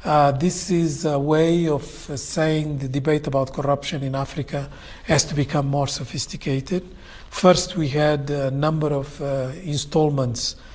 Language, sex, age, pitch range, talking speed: English, male, 50-69, 135-155 Hz, 150 wpm